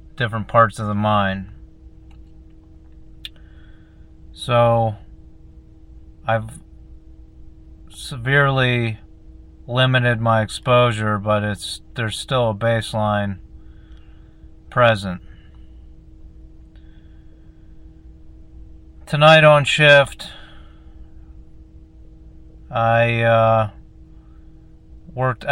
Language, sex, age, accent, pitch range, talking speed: English, male, 30-49, American, 80-115 Hz, 55 wpm